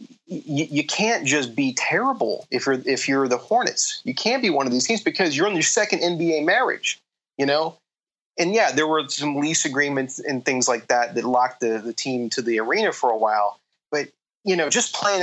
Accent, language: American, English